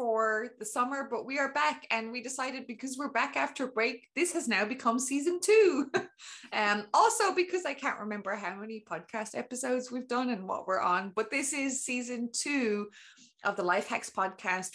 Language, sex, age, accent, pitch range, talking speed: English, female, 20-39, Irish, 200-255 Hz, 190 wpm